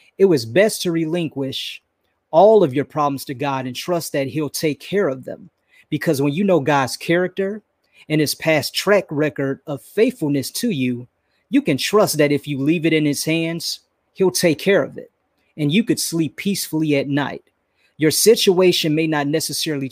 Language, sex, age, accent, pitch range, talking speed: English, male, 30-49, American, 140-170 Hz, 185 wpm